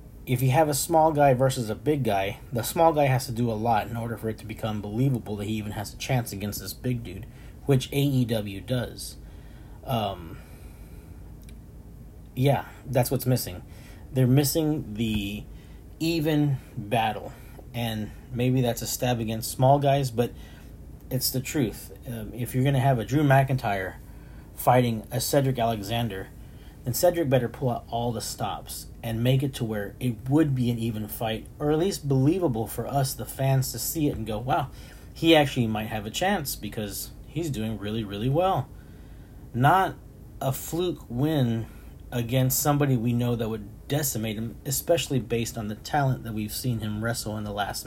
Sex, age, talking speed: male, 30-49, 180 wpm